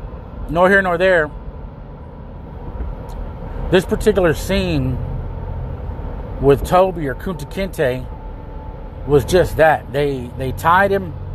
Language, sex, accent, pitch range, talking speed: English, male, American, 95-155 Hz, 100 wpm